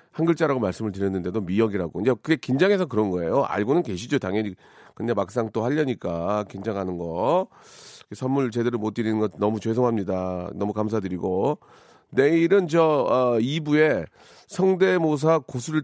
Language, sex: Korean, male